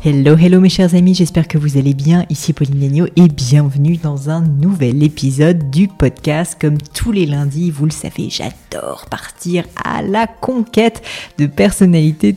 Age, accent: 30-49, French